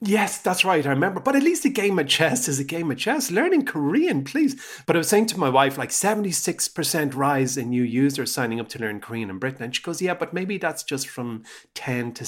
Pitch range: 110-160 Hz